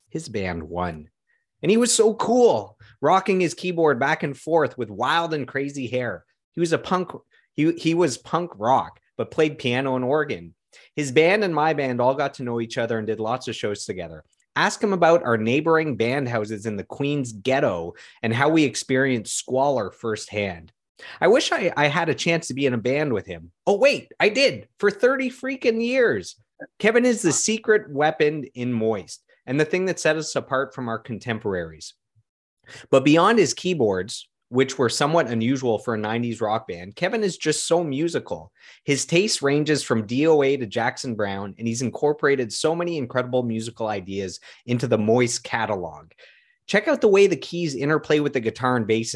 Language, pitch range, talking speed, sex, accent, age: English, 115-160 Hz, 190 wpm, male, American, 30-49